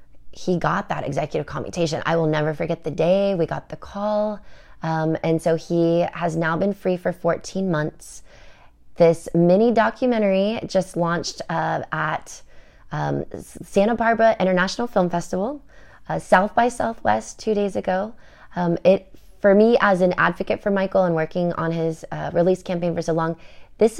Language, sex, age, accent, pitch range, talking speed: English, female, 20-39, American, 160-190 Hz, 165 wpm